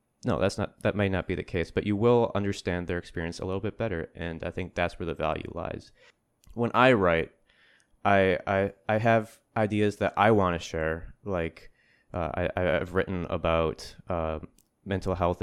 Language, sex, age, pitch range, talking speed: English, male, 20-39, 85-105 Hz, 190 wpm